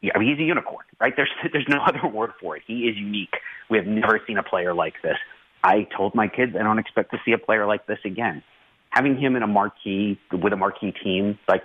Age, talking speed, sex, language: 30-49, 235 wpm, male, English